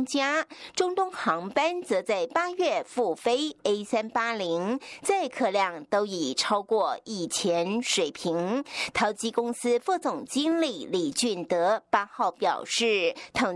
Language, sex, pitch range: German, female, 195-310 Hz